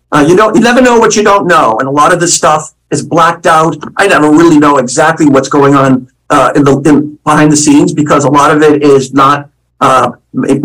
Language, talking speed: English, 235 wpm